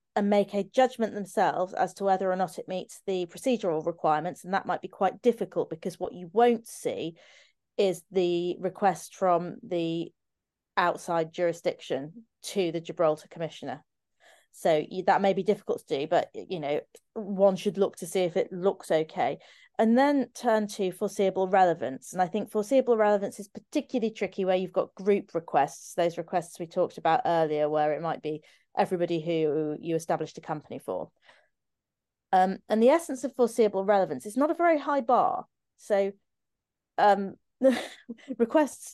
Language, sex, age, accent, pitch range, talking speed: English, female, 30-49, British, 175-230 Hz, 165 wpm